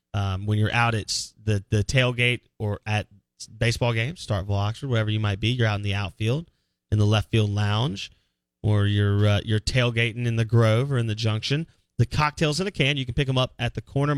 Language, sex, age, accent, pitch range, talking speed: English, male, 30-49, American, 100-125 Hz, 225 wpm